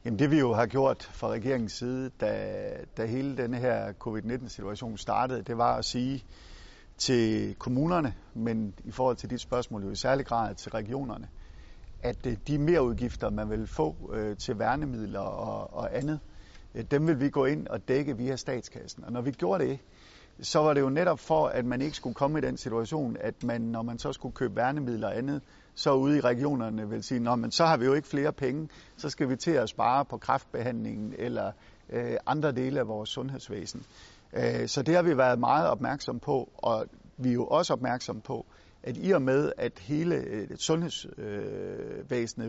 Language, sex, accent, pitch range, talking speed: Danish, male, native, 115-140 Hz, 190 wpm